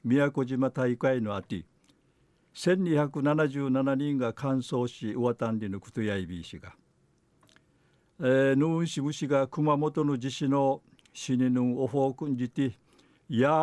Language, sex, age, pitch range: Japanese, male, 60-79, 125-145 Hz